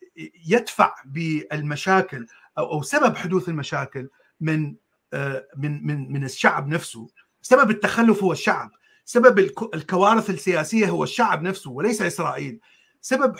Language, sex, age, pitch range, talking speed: Arabic, male, 40-59, 165-225 Hz, 110 wpm